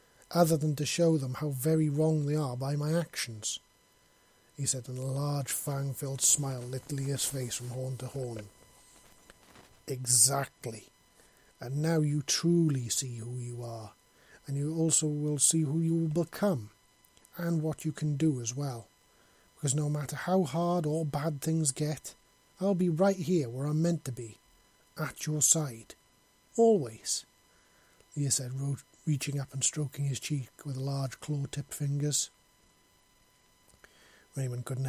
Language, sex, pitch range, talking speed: English, male, 130-150 Hz, 155 wpm